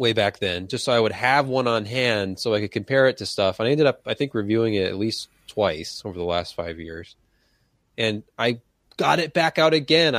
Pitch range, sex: 100-135 Hz, male